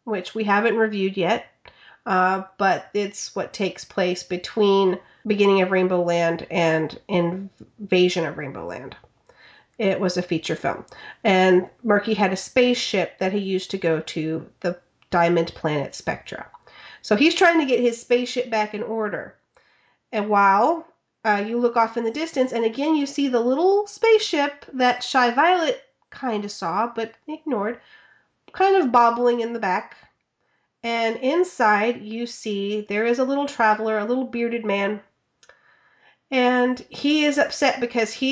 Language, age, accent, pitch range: English, 30-49, American, 195-270 Hz